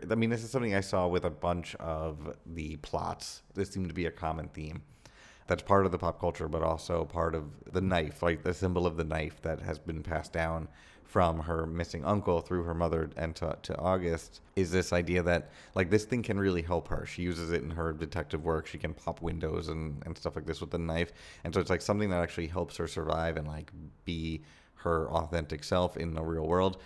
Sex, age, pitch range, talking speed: male, 30-49, 80-90 Hz, 230 wpm